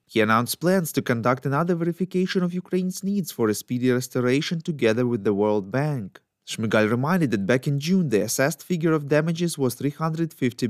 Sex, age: male, 30-49